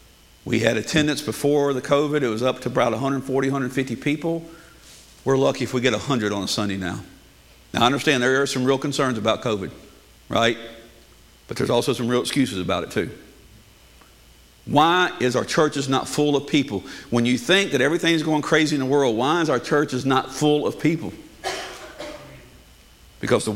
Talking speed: 190 wpm